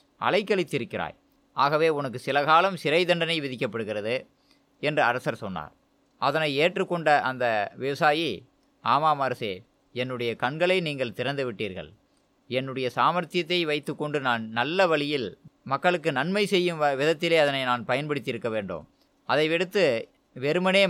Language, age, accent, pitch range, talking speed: Tamil, 20-39, native, 125-170 Hz, 120 wpm